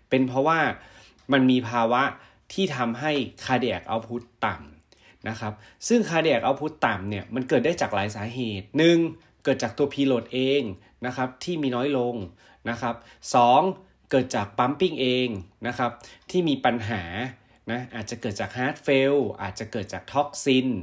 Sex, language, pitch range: male, Thai, 110-140 Hz